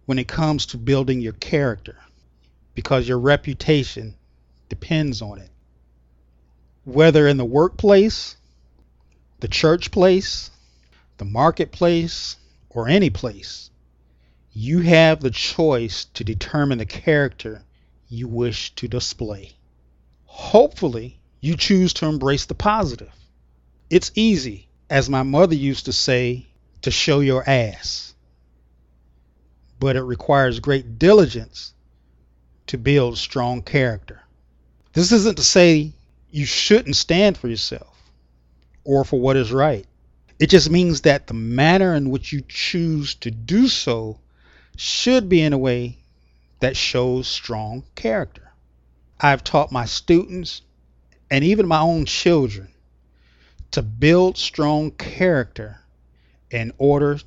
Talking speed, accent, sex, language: 120 wpm, American, male, English